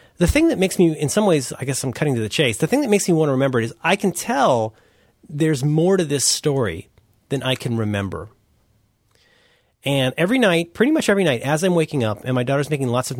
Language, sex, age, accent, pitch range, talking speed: English, male, 30-49, American, 115-165 Hz, 245 wpm